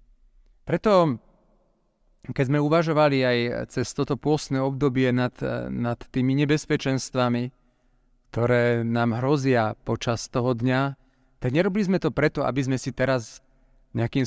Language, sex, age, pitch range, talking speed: Slovak, male, 40-59, 120-150 Hz, 120 wpm